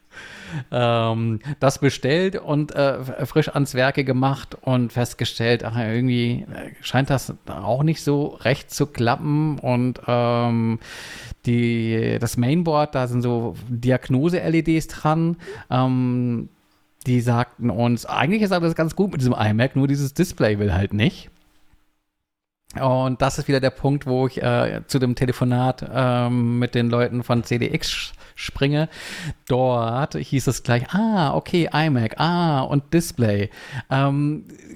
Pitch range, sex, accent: 120-150 Hz, male, German